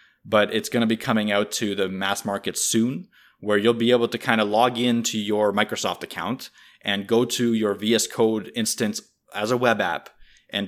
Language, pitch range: English, 100-120 Hz